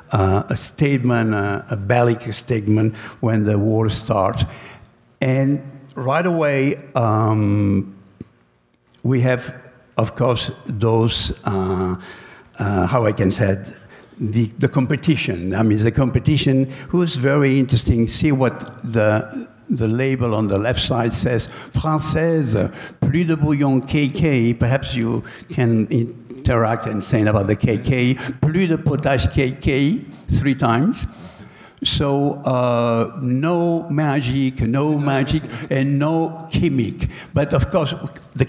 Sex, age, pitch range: male, 60-79, 110-140 Hz